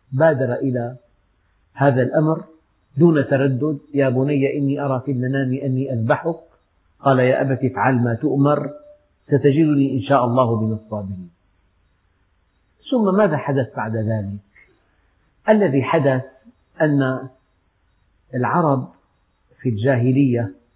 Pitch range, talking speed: 105-150 Hz, 105 wpm